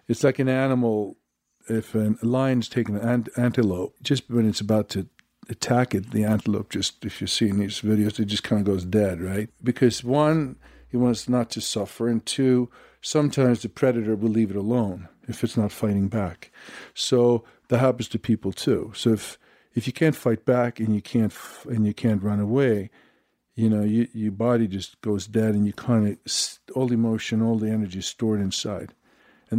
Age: 50-69